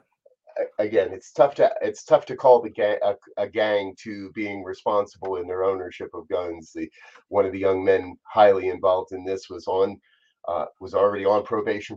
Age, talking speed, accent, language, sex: 30-49, 190 wpm, American, English, male